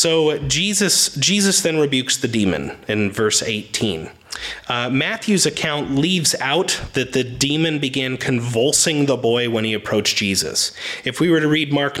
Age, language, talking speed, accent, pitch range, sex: 30-49, English, 160 wpm, American, 115-160 Hz, male